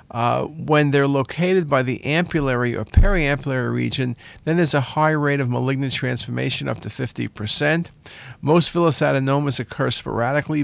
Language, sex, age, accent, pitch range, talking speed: English, male, 50-69, American, 120-155 Hz, 145 wpm